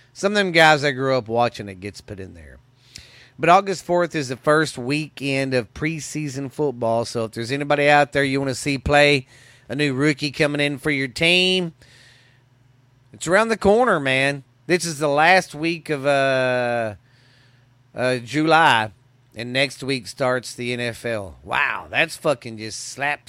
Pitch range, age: 120-145 Hz, 40-59